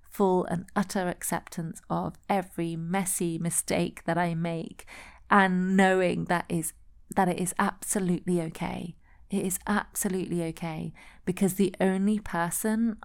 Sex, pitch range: female, 170-195 Hz